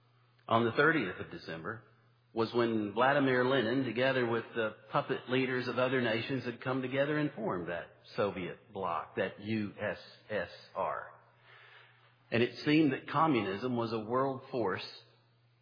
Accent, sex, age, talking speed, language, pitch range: American, male, 50-69, 140 wpm, English, 110-125 Hz